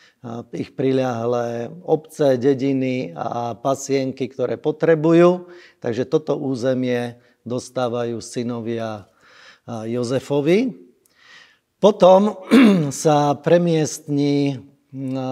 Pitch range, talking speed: 130-155 Hz, 65 wpm